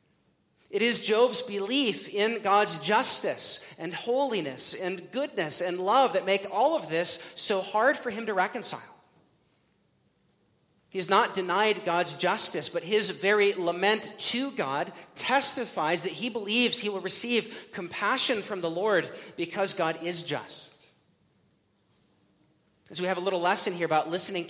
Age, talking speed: 40-59, 145 wpm